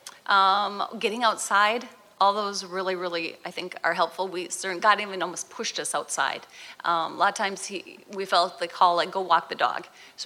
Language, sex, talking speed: English, female, 200 wpm